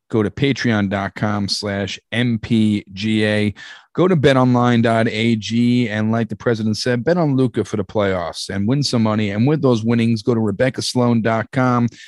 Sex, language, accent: male, English, American